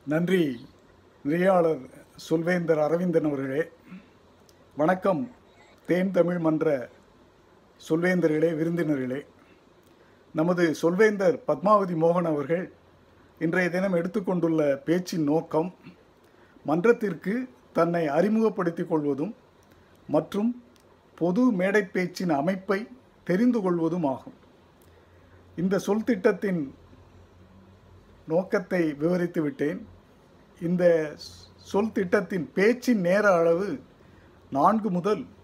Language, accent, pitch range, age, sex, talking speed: Tamil, native, 130-185 Hz, 50-69, male, 80 wpm